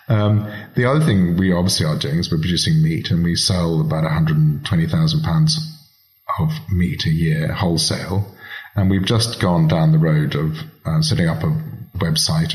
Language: English